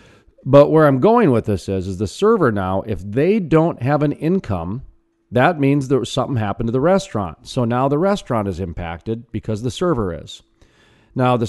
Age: 40-59